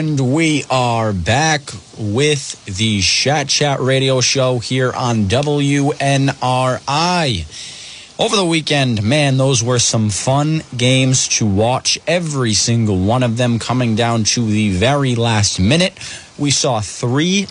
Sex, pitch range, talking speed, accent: male, 120-150 Hz, 135 wpm, American